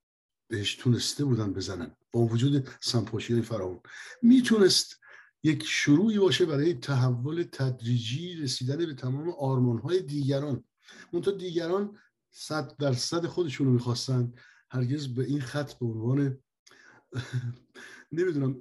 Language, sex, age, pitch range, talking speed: Persian, male, 50-69, 125-155 Hz, 115 wpm